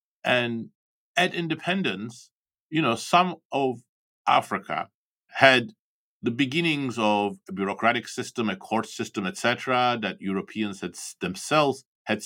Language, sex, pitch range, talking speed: English, male, 105-140 Hz, 120 wpm